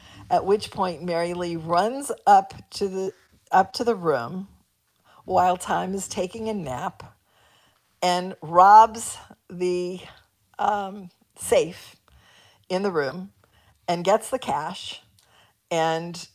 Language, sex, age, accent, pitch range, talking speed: English, female, 50-69, American, 165-205 Hz, 115 wpm